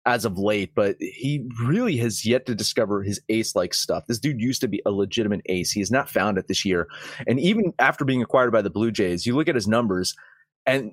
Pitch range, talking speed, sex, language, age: 110-160 Hz, 240 wpm, male, English, 30-49